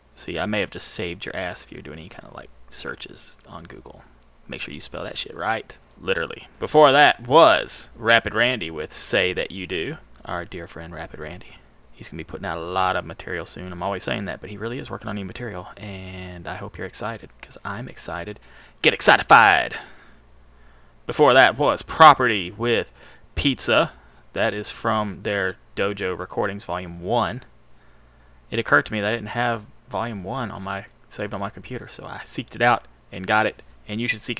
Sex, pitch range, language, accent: male, 90-115 Hz, English, American